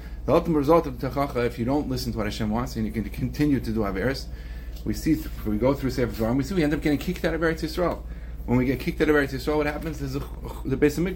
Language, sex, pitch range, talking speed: English, male, 105-170 Hz, 285 wpm